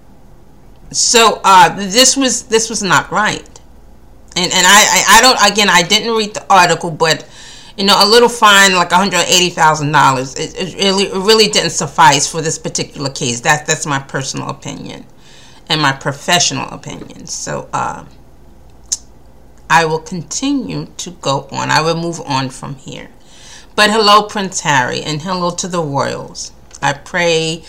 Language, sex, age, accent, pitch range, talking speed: English, female, 40-59, American, 145-205 Hz, 160 wpm